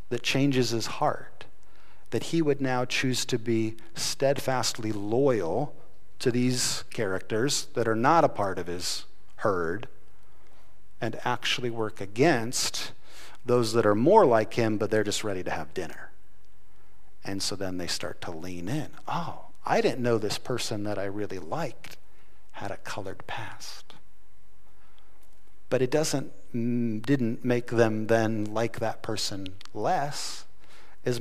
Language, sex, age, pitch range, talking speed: English, male, 50-69, 105-130 Hz, 145 wpm